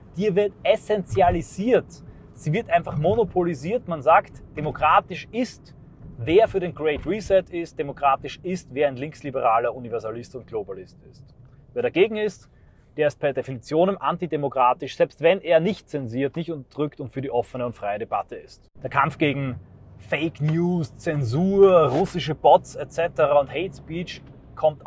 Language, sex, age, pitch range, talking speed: German, male, 30-49, 130-175 Hz, 150 wpm